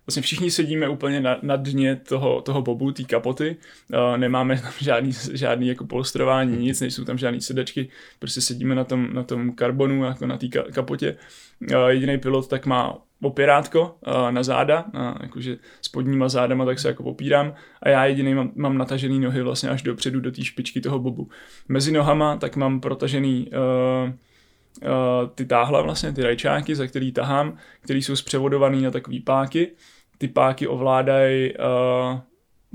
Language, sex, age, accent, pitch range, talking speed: Czech, male, 20-39, native, 125-135 Hz, 170 wpm